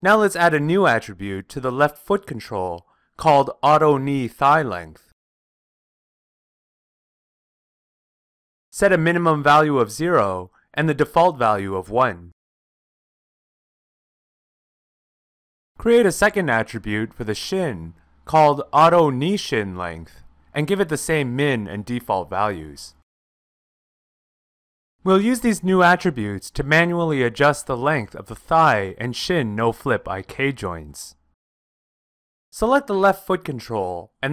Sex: male